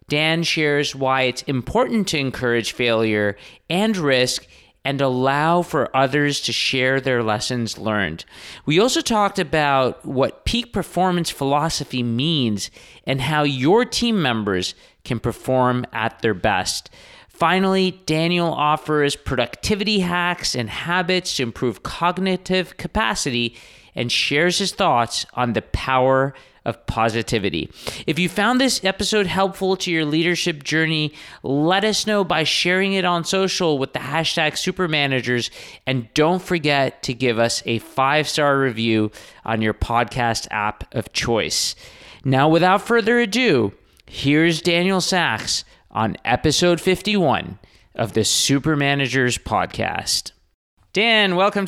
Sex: male